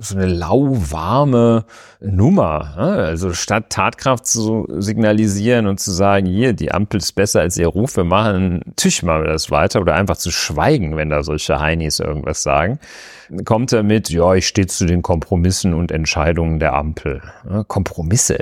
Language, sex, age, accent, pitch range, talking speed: German, male, 40-59, German, 85-115 Hz, 165 wpm